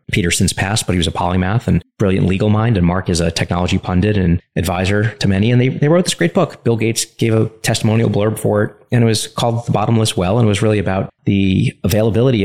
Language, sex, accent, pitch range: English, male, American, 85-110 Hz